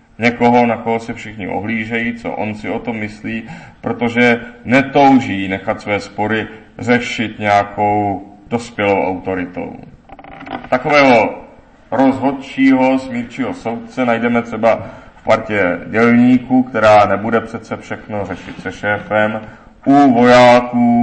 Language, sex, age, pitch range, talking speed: Czech, male, 40-59, 105-125 Hz, 110 wpm